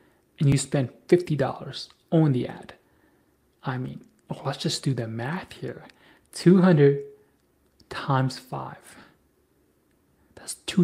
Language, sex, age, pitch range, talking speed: English, male, 30-49, 125-155 Hz, 110 wpm